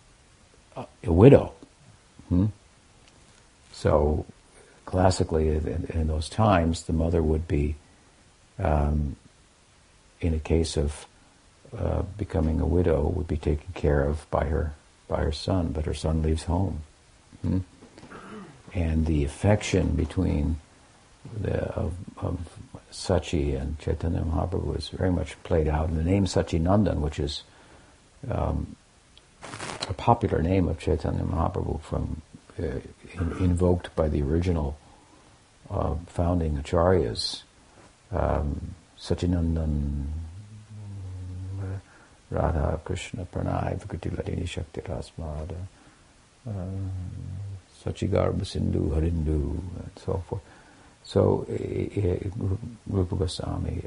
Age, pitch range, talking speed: 60-79, 80-95 Hz, 105 wpm